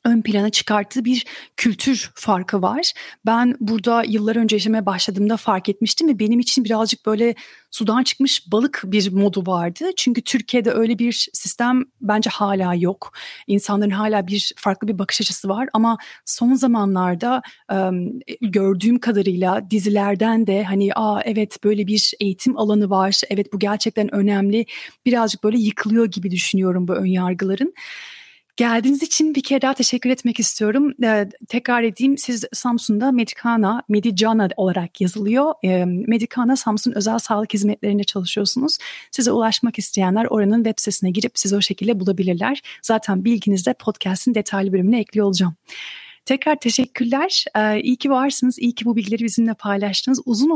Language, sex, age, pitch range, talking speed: Turkish, female, 30-49, 200-240 Hz, 145 wpm